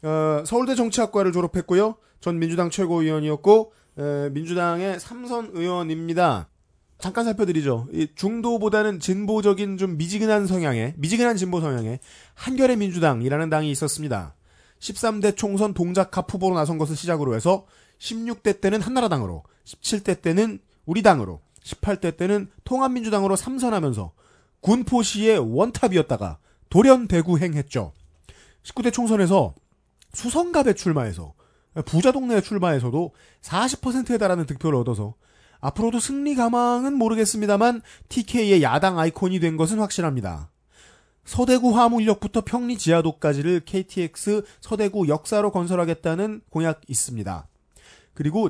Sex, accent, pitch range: male, native, 150-220 Hz